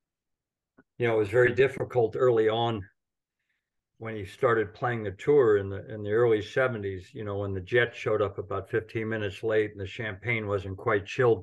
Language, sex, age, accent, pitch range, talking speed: English, male, 50-69, American, 95-125 Hz, 195 wpm